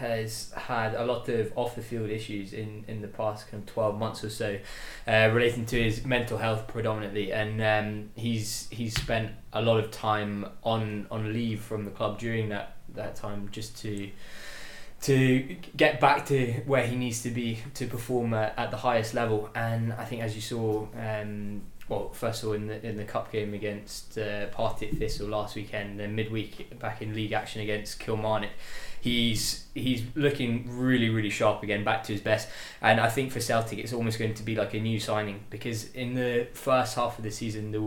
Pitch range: 105-120 Hz